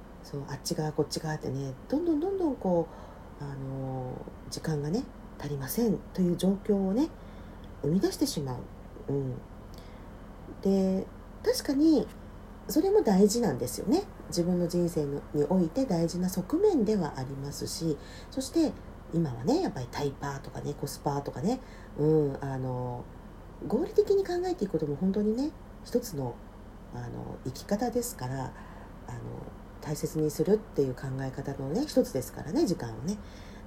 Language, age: Japanese, 40-59